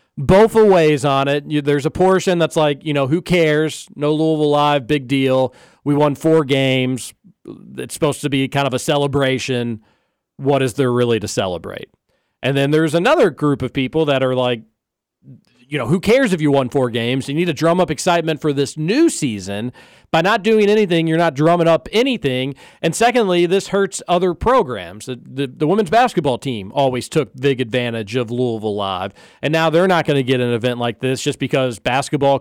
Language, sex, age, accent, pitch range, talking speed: English, male, 40-59, American, 130-170 Hz, 200 wpm